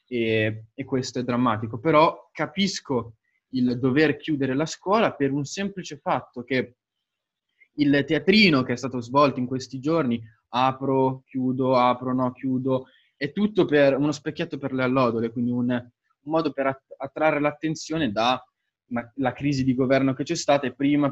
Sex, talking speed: male, 150 wpm